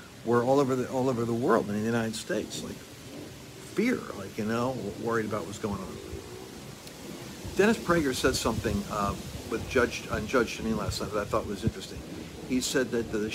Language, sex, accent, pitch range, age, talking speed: English, male, American, 100-125 Hz, 60-79, 200 wpm